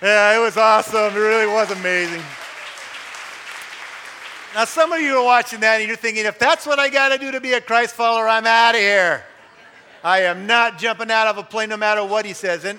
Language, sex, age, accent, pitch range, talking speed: English, male, 50-69, American, 155-210 Hz, 225 wpm